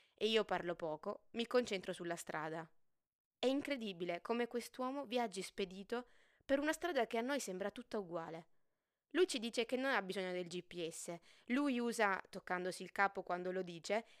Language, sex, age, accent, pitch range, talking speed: Italian, female, 20-39, native, 180-240 Hz, 170 wpm